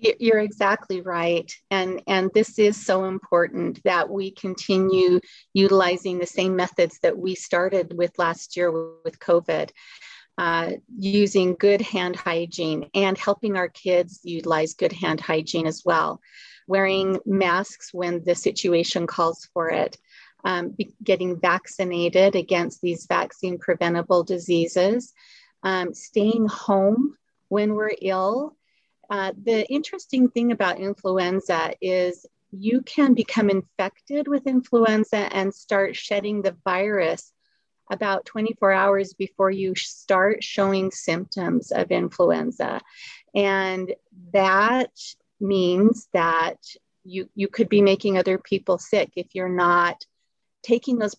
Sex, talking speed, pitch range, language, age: female, 125 wpm, 180-210 Hz, English, 30-49